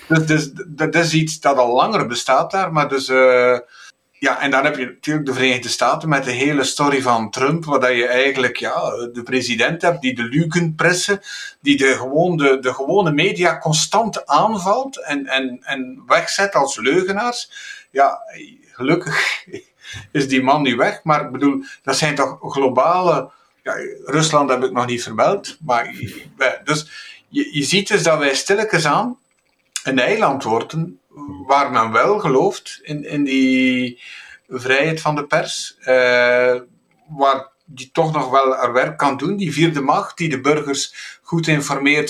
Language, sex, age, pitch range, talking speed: Dutch, male, 50-69, 130-165 Hz, 165 wpm